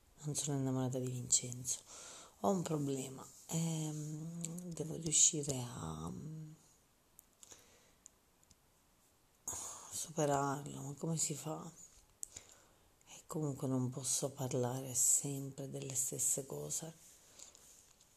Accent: native